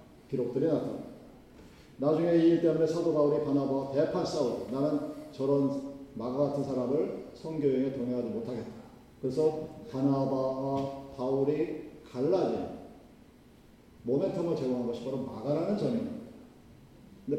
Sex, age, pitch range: male, 40-59, 135-180 Hz